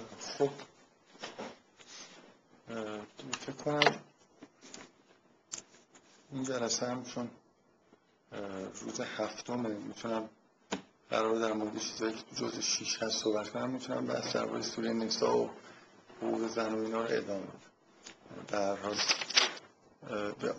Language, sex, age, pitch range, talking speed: Persian, male, 50-69, 110-125 Hz, 110 wpm